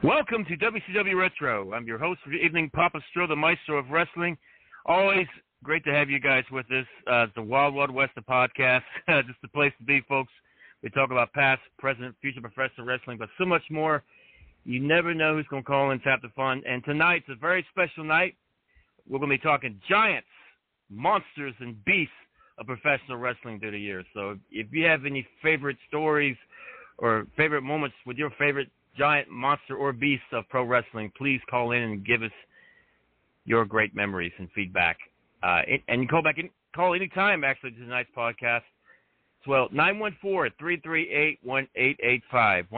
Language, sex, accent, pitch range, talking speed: English, male, American, 120-155 Hz, 180 wpm